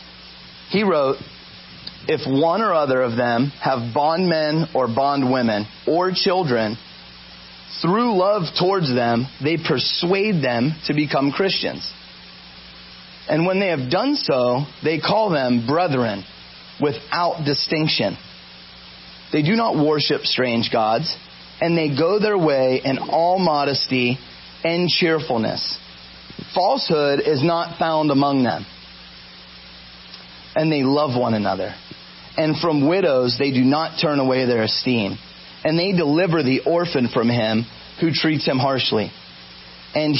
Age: 30-49